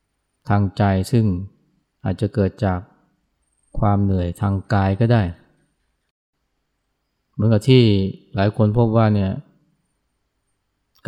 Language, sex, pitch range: Thai, male, 95-110 Hz